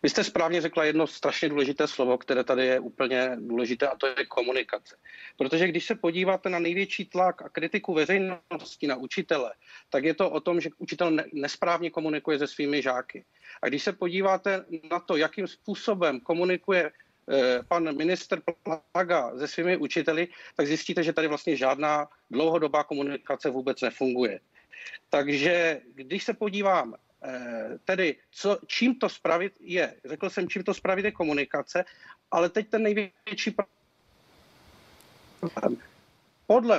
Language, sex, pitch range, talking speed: Czech, male, 150-185 Hz, 145 wpm